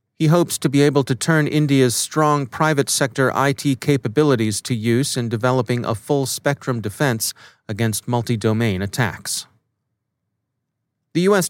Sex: male